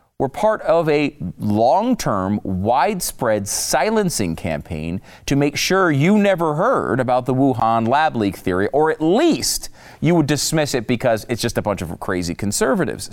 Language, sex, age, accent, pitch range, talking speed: English, male, 40-59, American, 100-150 Hz, 160 wpm